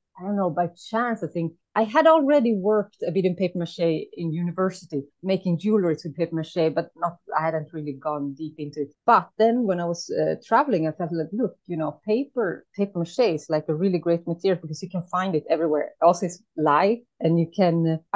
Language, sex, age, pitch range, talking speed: English, female, 30-49, 160-200 Hz, 220 wpm